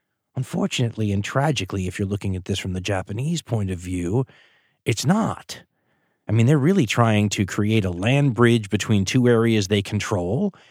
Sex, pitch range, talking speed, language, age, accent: male, 100-125 Hz, 175 wpm, English, 30-49, American